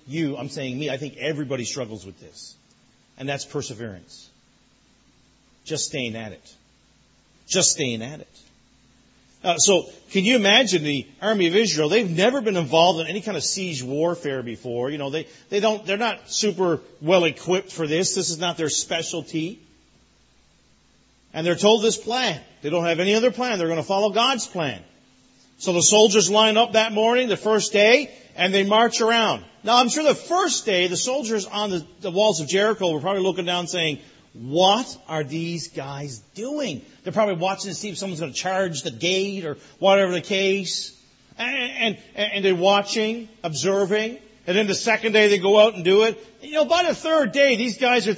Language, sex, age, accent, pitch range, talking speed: English, male, 40-59, American, 170-245 Hz, 195 wpm